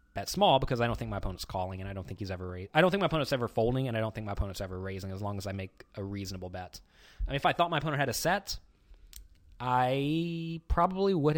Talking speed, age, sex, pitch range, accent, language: 275 wpm, 20-39, male, 100-145 Hz, American, English